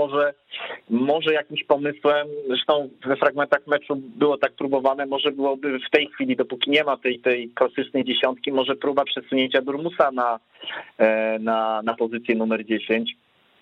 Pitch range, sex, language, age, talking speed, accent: 115-140 Hz, male, Polish, 30-49, 145 wpm, native